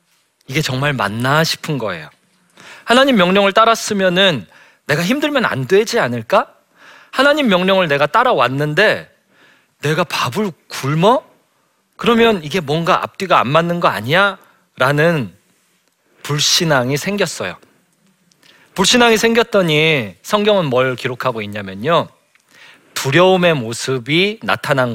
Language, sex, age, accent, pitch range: Korean, male, 40-59, native, 135-195 Hz